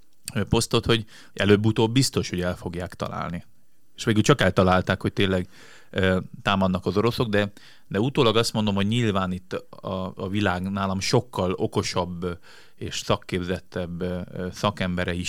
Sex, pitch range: male, 90-105 Hz